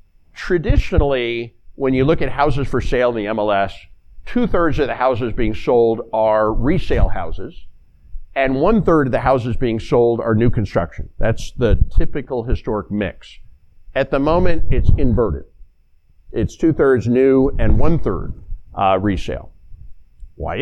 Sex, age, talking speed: male, 50-69, 135 wpm